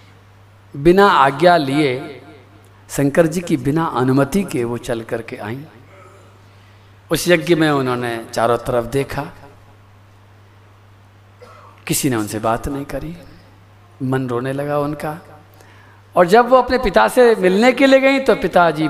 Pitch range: 105-170 Hz